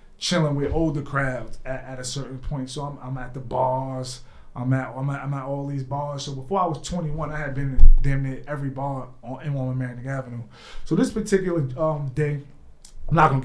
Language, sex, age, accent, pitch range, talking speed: English, male, 20-39, American, 130-150 Hz, 225 wpm